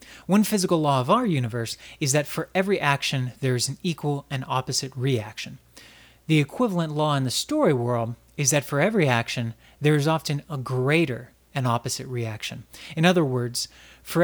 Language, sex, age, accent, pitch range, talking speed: English, male, 30-49, American, 120-160 Hz, 175 wpm